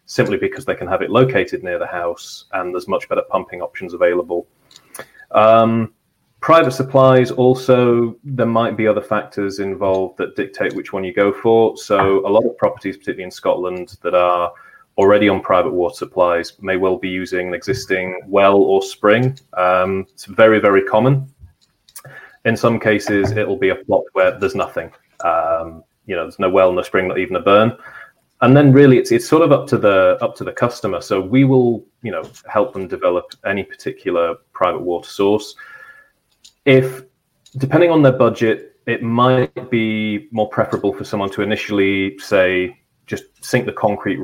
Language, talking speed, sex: English, 180 wpm, male